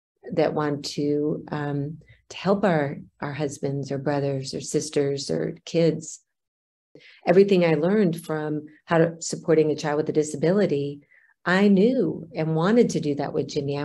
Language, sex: English, female